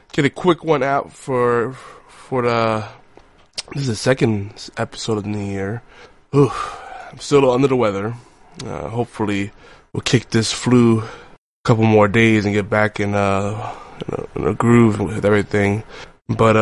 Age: 20-39